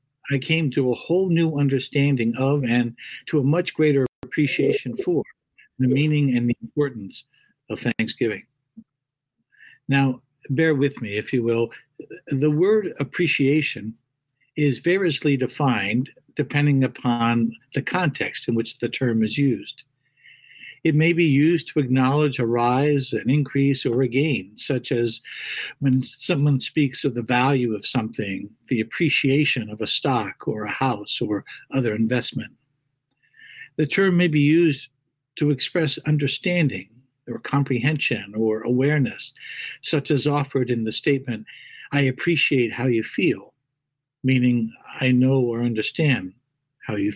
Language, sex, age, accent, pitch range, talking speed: English, male, 60-79, American, 120-145 Hz, 140 wpm